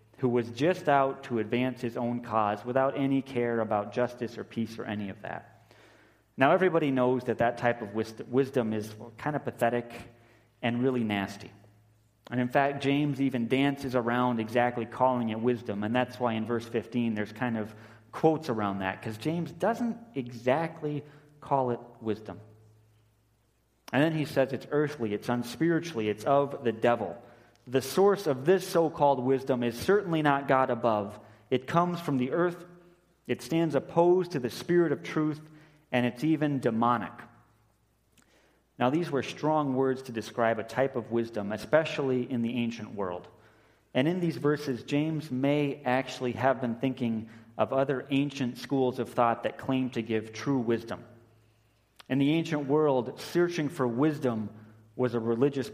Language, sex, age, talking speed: English, male, 30-49, 165 wpm